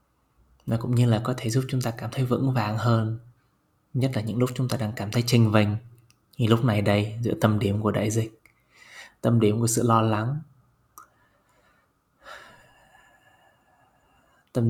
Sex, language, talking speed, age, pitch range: male, Vietnamese, 170 wpm, 20-39, 110-130 Hz